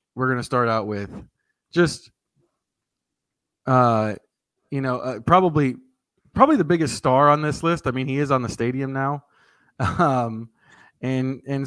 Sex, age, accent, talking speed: male, 20-39, American, 155 wpm